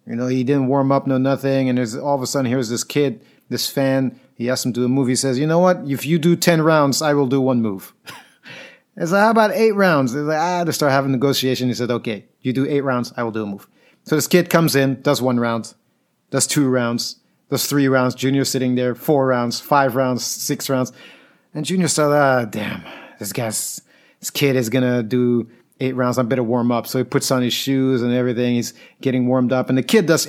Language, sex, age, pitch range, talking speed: English, male, 30-49, 125-150 Hz, 250 wpm